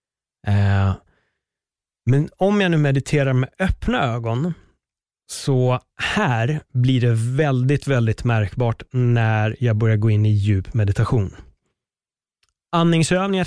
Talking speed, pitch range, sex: 105 wpm, 100-130 Hz, male